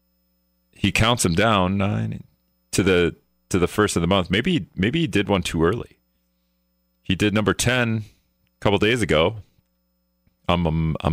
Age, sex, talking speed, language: 30-49, male, 160 wpm, English